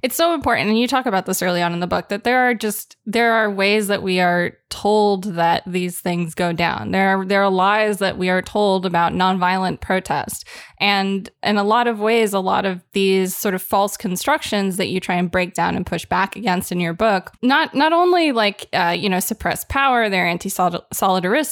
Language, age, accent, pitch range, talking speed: English, 20-39, American, 180-205 Hz, 220 wpm